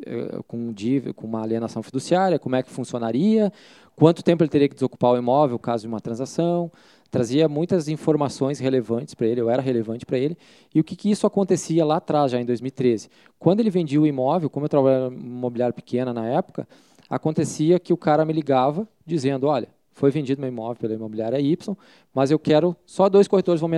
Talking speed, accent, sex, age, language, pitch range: 205 wpm, Brazilian, male, 20-39, Portuguese, 125-170 Hz